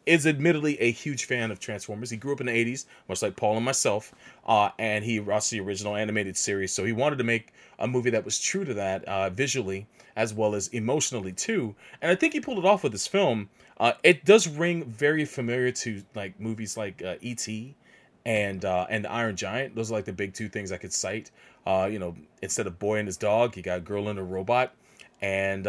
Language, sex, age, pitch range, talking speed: English, male, 30-49, 100-130 Hz, 230 wpm